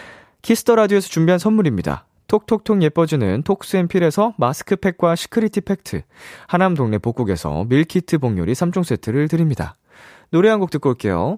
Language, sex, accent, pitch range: Korean, male, native, 110-175 Hz